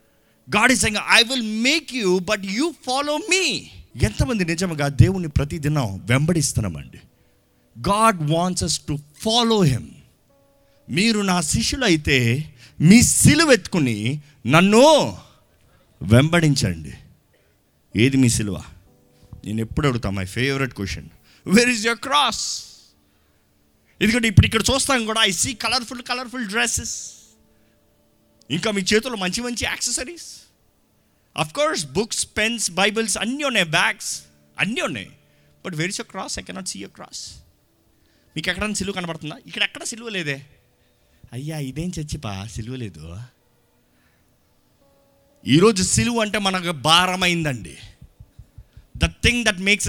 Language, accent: Telugu, native